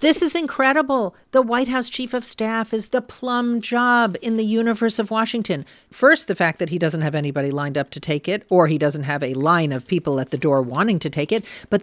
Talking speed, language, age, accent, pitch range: 240 wpm, English, 50-69, American, 150-210 Hz